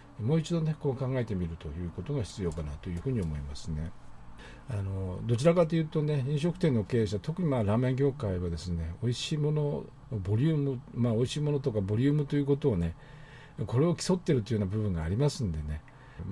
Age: 50-69